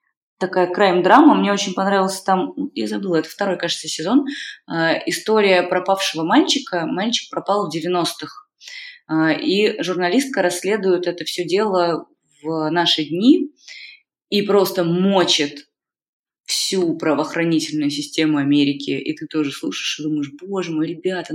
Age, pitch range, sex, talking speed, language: 20-39, 155-260 Hz, female, 125 wpm, Russian